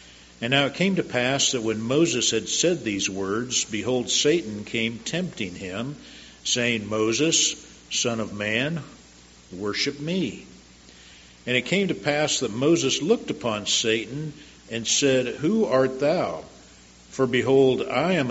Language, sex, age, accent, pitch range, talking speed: English, male, 50-69, American, 100-140 Hz, 145 wpm